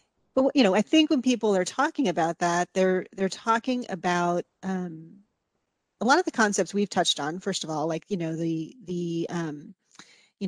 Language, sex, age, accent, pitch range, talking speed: English, female, 30-49, American, 175-200 Hz, 195 wpm